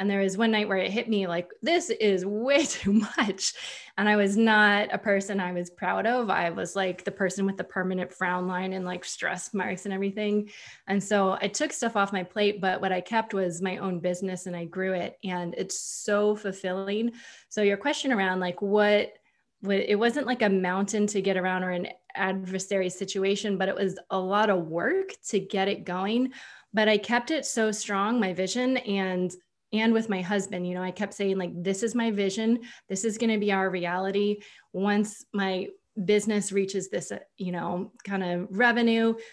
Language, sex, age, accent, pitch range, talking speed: English, female, 20-39, American, 190-220 Hz, 205 wpm